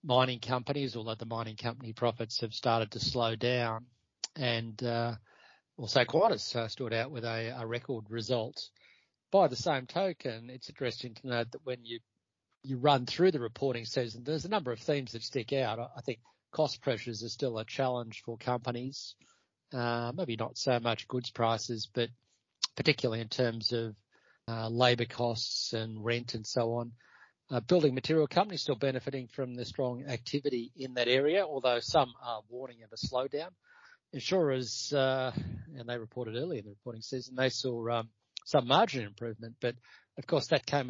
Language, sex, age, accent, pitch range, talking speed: English, male, 40-59, Australian, 115-130 Hz, 180 wpm